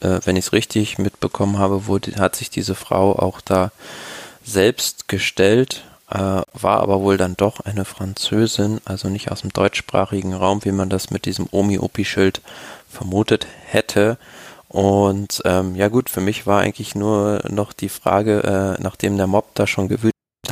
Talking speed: 165 wpm